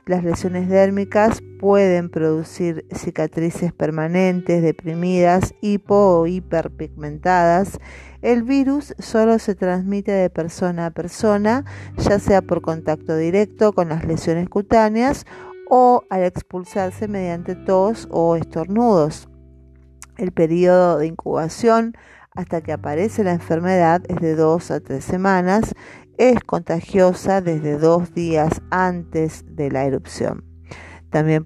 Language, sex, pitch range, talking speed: Spanish, female, 155-190 Hz, 115 wpm